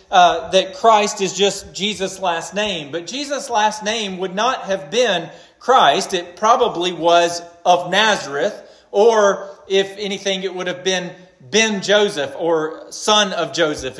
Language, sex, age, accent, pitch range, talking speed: English, male, 40-59, American, 175-220 Hz, 145 wpm